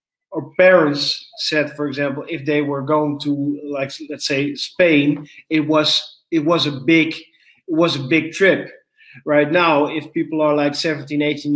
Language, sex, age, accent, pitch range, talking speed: Dutch, male, 30-49, Dutch, 145-170 Hz, 170 wpm